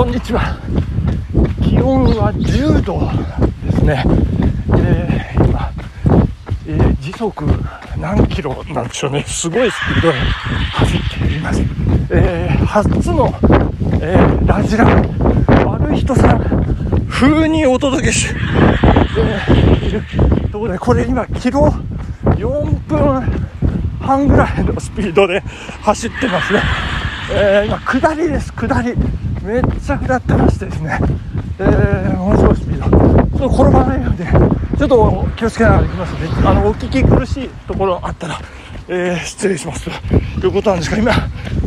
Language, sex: Japanese, male